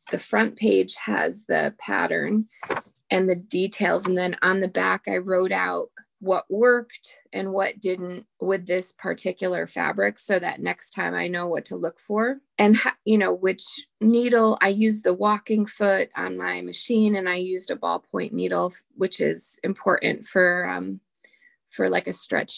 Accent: American